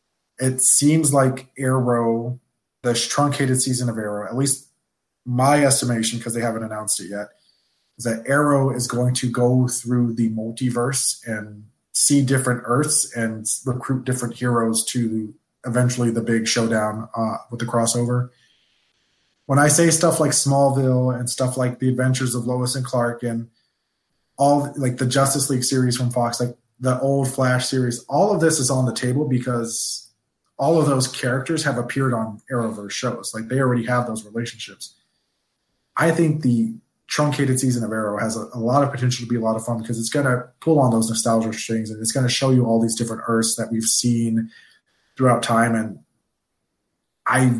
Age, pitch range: 20-39, 115-130 Hz